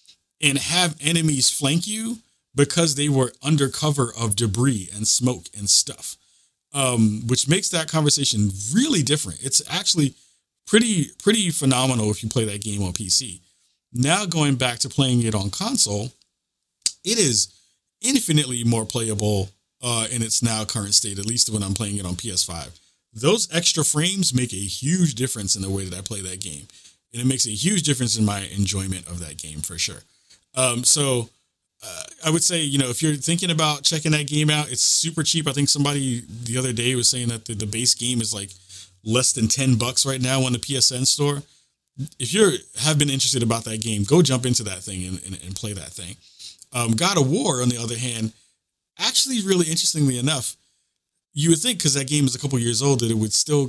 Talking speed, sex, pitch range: 200 wpm, male, 105-145 Hz